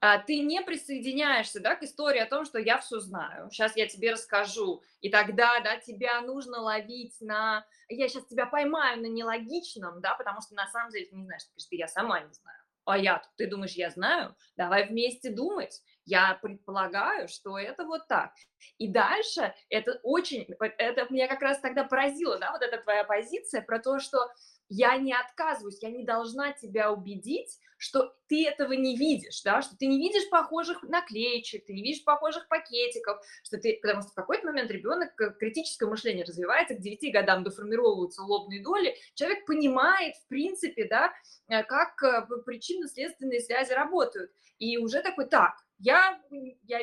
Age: 20-39